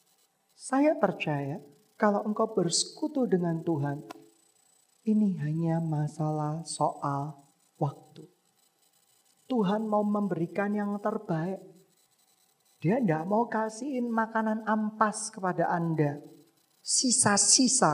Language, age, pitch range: Indonesian, 40-59, 155-215 Hz